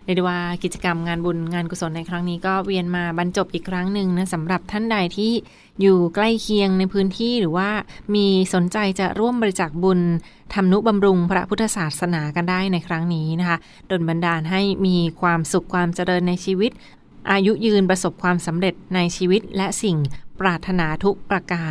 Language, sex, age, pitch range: Thai, female, 20-39, 175-195 Hz